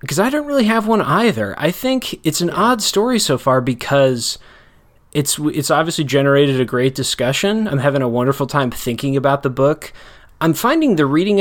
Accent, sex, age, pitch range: American, male, 20-39, 130-165 Hz